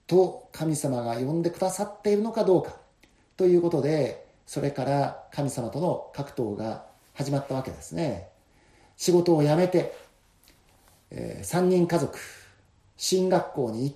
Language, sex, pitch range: Japanese, male, 125-185 Hz